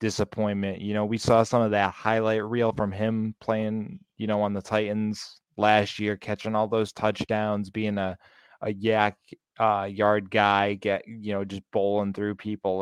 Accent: American